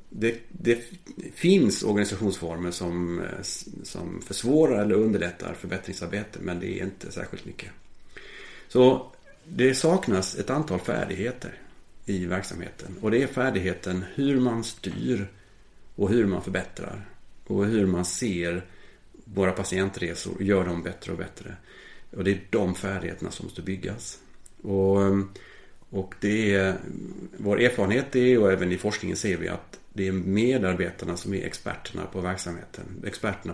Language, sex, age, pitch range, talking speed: Swedish, male, 30-49, 95-115 Hz, 140 wpm